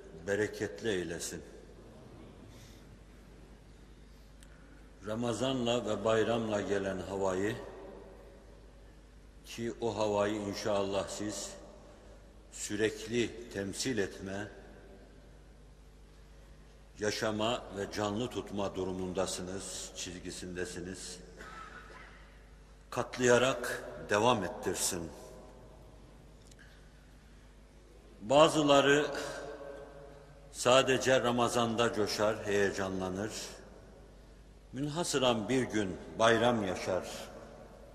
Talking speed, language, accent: 55 wpm, Turkish, native